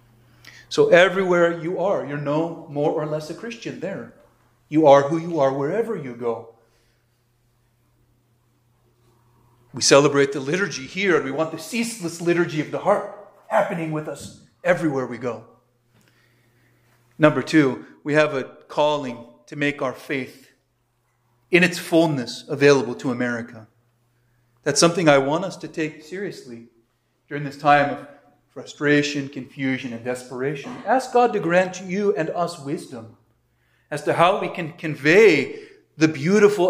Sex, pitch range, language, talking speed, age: male, 120-165 Hz, English, 145 wpm, 40-59